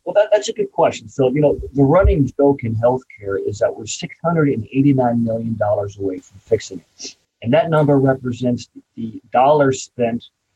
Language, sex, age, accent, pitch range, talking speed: English, male, 40-59, American, 110-140 Hz, 205 wpm